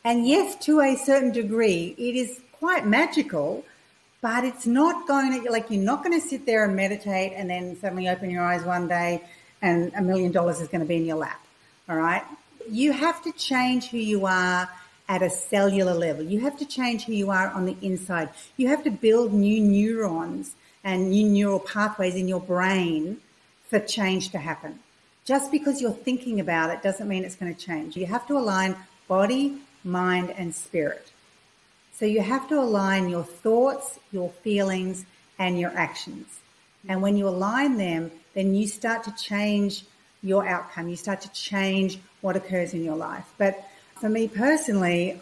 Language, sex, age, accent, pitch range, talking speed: English, female, 50-69, Australian, 180-230 Hz, 185 wpm